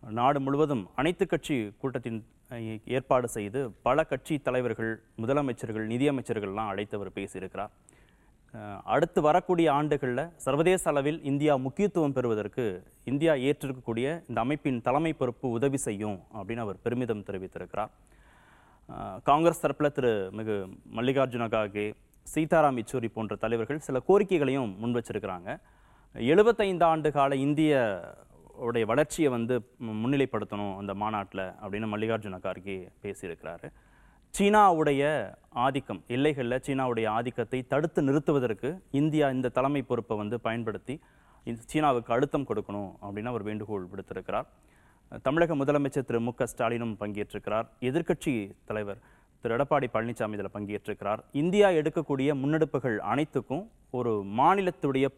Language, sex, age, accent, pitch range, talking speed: Tamil, male, 30-49, native, 110-145 Hz, 110 wpm